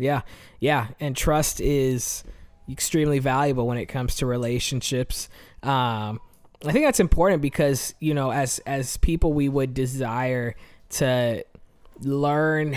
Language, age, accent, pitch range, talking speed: English, 20-39, American, 125-145 Hz, 130 wpm